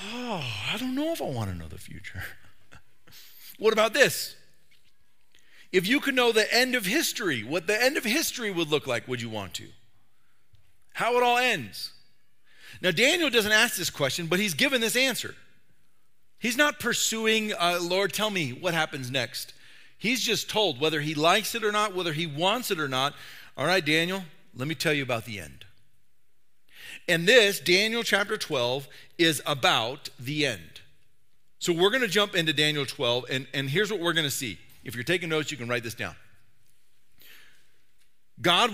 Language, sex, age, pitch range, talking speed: English, male, 40-59, 125-210 Hz, 185 wpm